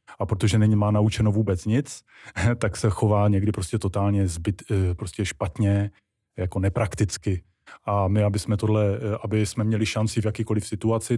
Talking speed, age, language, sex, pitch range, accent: 160 wpm, 30-49, Czech, male, 105-115 Hz, native